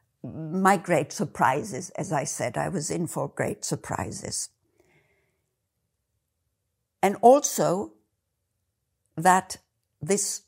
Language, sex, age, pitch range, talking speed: English, female, 60-79, 130-195 Hz, 90 wpm